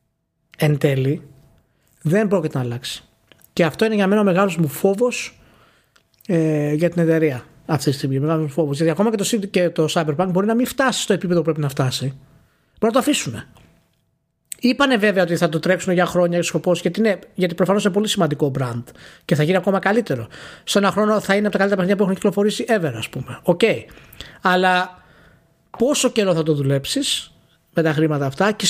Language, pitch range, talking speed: Greek, 155-220 Hz, 195 wpm